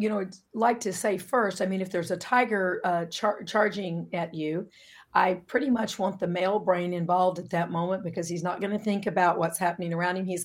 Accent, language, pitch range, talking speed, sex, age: American, English, 175-210 Hz, 230 wpm, female, 50-69